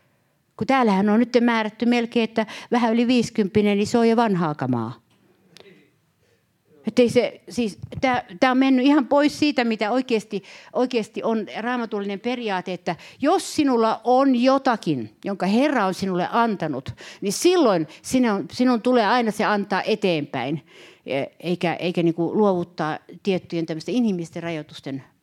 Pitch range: 165-230 Hz